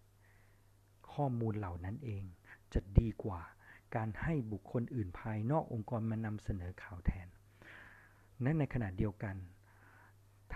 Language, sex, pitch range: Thai, male, 105-130 Hz